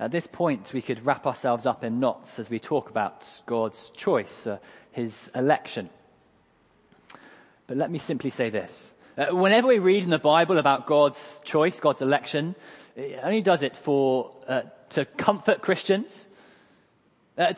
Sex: male